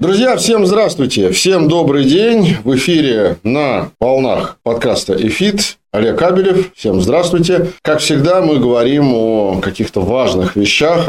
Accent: native